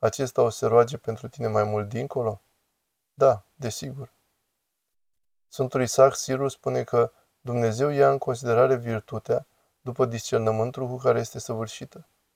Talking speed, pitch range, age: 130 wpm, 115-135 Hz, 20-39